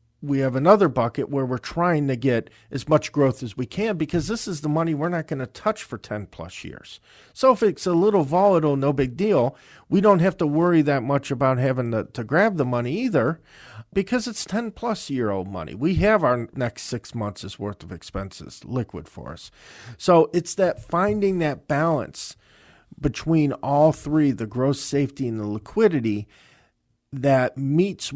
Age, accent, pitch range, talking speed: 50-69, American, 110-155 Hz, 190 wpm